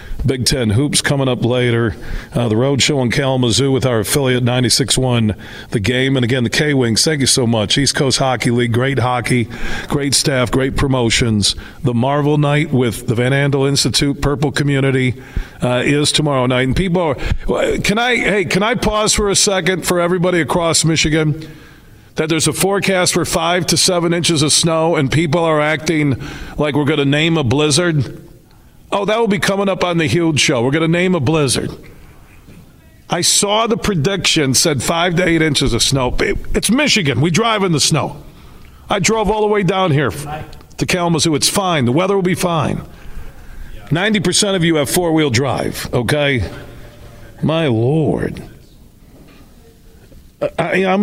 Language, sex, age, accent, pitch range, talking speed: English, male, 40-59, American, 125-170 Hz, 175 wpm